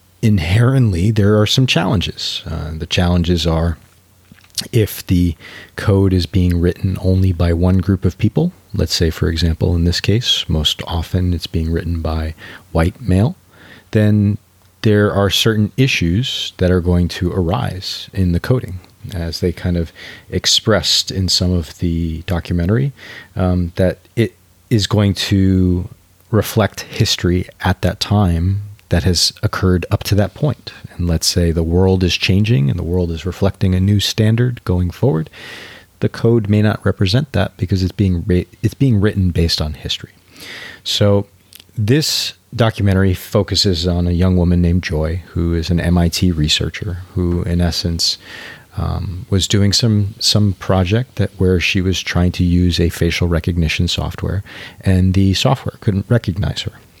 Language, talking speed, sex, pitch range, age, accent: English, 160 wpm, male, 90-105 Hz, 30-49, American